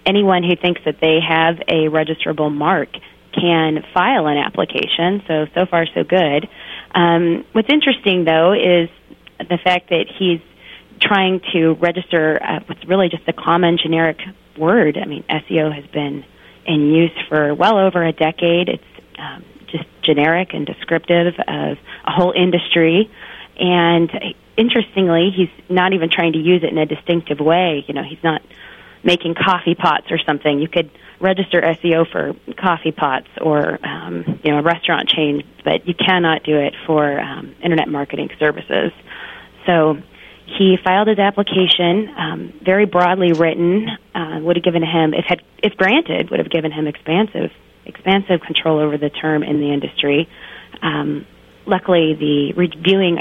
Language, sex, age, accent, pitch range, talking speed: English, female, 30-49, American, 155-185 Hz, 160 wpm